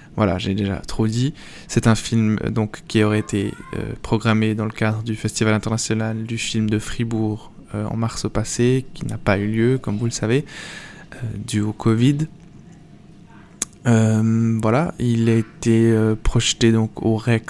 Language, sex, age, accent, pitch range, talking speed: French, male, 20-39, French, 105-120 Hz, 180 wpm